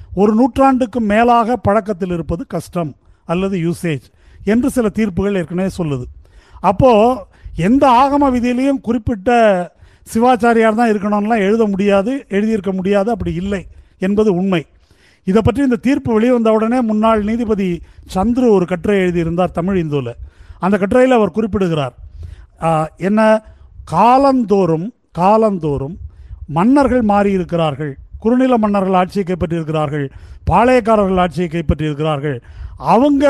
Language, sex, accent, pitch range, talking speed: Tamil, male, native, 170-230 Hz, 100 wpm